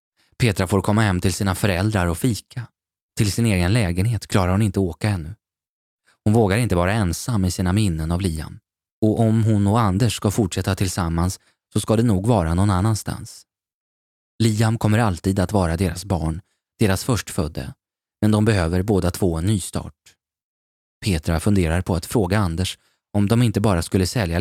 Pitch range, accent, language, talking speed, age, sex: 90-110 Hz, native, Swedish, 175 wpm, 20-39, male